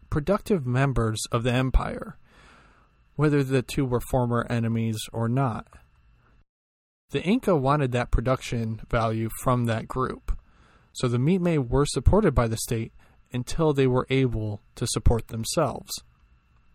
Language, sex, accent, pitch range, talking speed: English, male, American, 115-145 Hz, 135 wpm